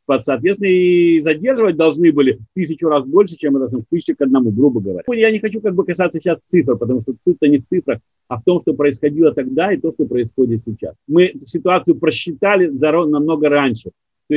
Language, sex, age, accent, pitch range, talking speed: Russian, male, 50-69, native, 140-180 Hz, 200 wpm